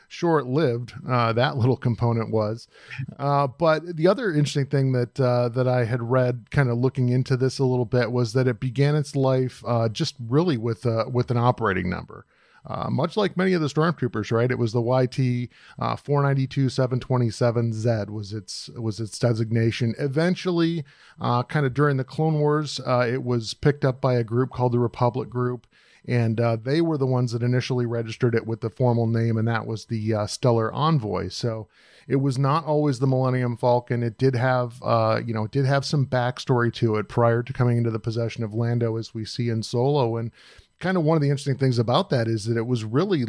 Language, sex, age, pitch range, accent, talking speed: English, male, 40-59, 115-135 Hz, American, 205 wpm